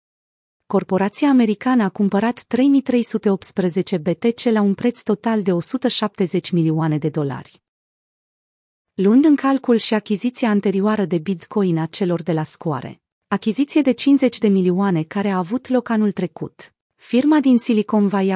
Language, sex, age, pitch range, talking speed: Romanian, female, 30-49, 185-230 Hz, 140 wpm